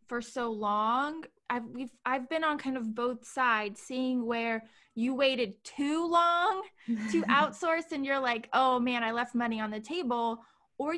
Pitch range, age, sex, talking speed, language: 230-290 Hz, 20-39, female, 170 wpm, English